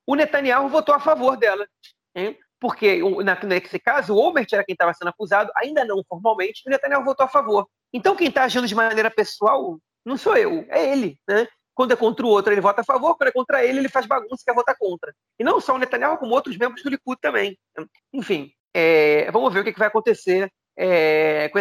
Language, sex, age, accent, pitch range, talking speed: Portuguese, male, 30-49, Brazilian, 170-260 Hz, 215 wpm